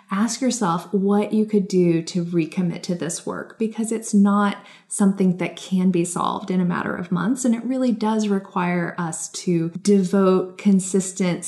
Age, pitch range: 20-39, 180-210 Hz